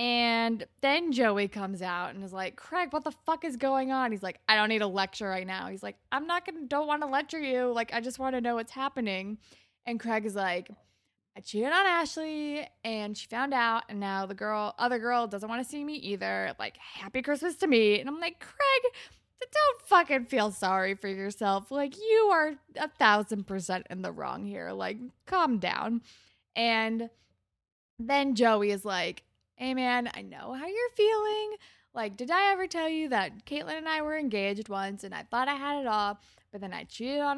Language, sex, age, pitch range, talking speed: English, female, 20-39, 200-290 Hz, 210 wpm